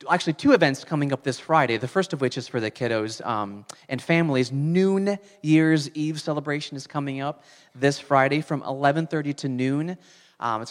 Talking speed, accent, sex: 185 wpm, American, male